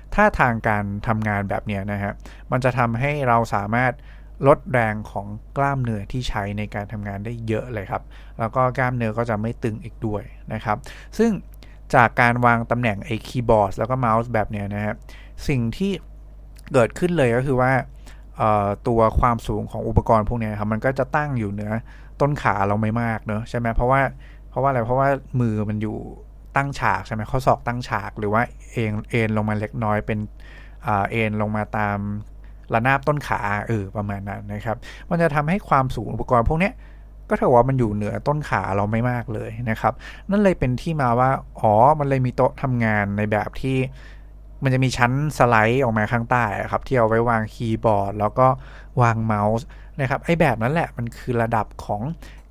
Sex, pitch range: male, 105-130 Hz